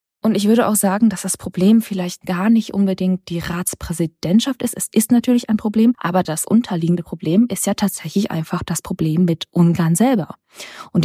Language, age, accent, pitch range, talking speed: German, 20-39, German, 180-215 Hz, 185 wpm